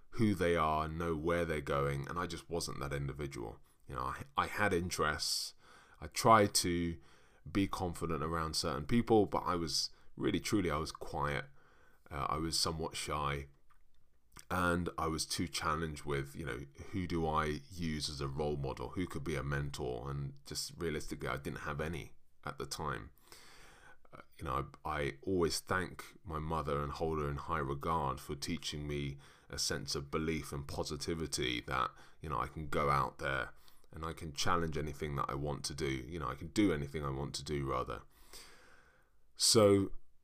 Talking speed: 185 wpm